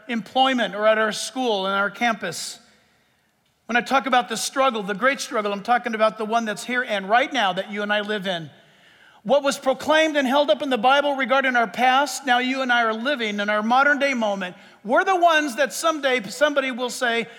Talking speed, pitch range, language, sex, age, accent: 220 wpm, 225-290 Hz, English, male, 50-69, American